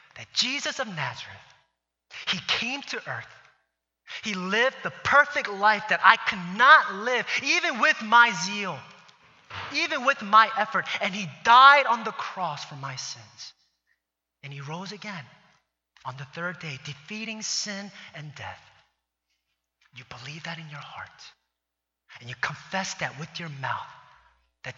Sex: male